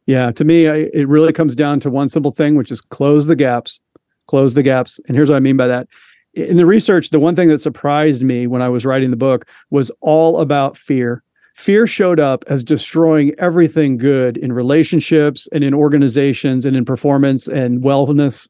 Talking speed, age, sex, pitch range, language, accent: 200 wpm, 40-59, male, 140-175 Hz, English, American